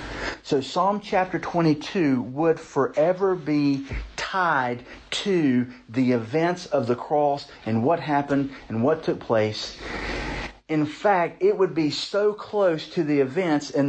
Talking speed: 140 wpm